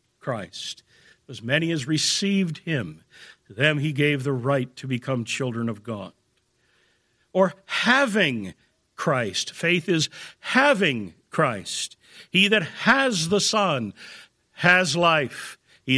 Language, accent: English, American